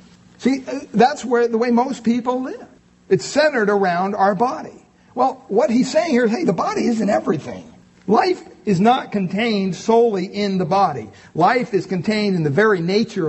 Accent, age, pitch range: American, 50-69, 170-230 Hz